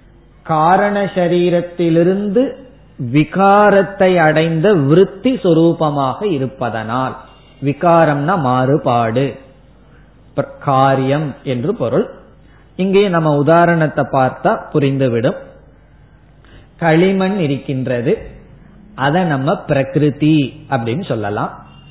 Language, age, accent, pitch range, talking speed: Tamil, 20-39, native, 130-175 Hz, 65 wpm